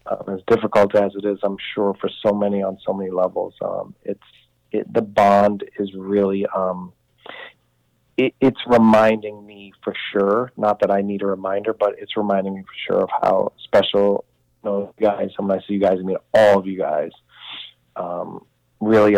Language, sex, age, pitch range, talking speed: English, male, 40-59, 90-105 Hz, 190 wpm